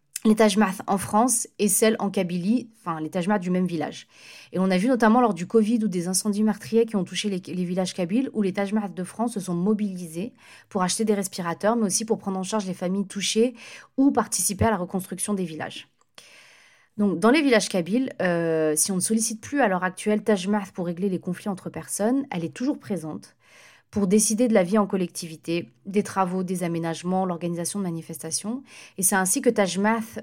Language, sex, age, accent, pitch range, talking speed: French, female, 30-49, French, 175-220 Hz, 210 wpm